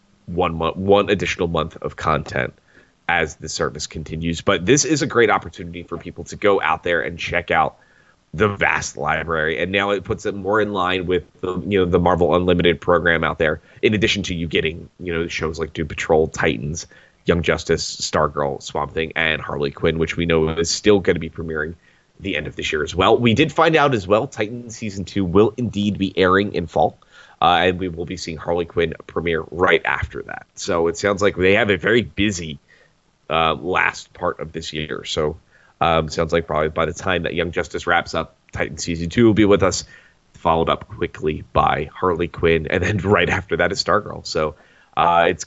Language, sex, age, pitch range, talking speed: English, male, 20-39, 80-100 Hz, 215 wpm